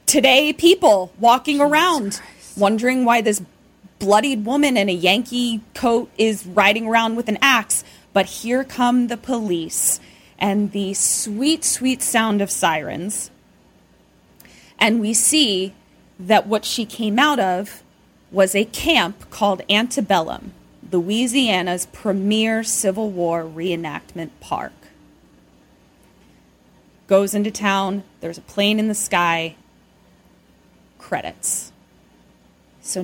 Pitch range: 190-235 Hz